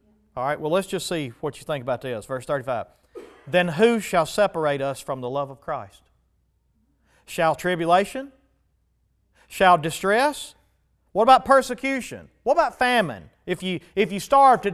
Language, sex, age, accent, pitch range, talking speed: English, male, 40-59, American, 165-255 Hz, 155 wpm